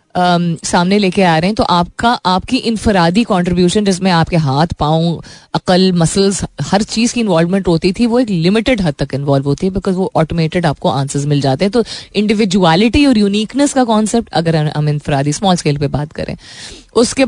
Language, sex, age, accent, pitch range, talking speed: Hindi, female, 20-39, native, 160-215 Hz, 180 wpm